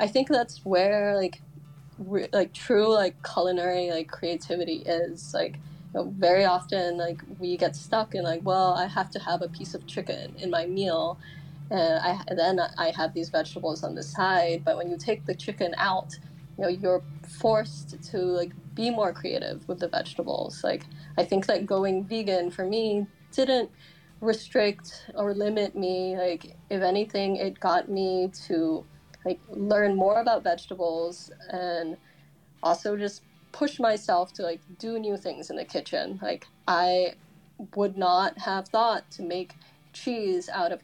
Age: 10-29